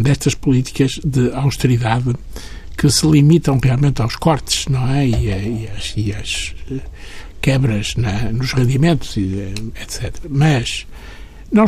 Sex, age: male, 60-79